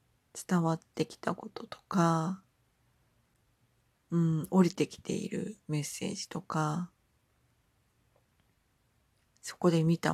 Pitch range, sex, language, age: 130-180 Hz, female, Japanese, 40-59